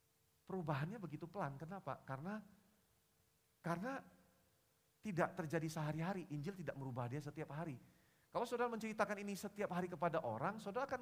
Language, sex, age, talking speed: Indonesian, male, 40-59, 135 wpm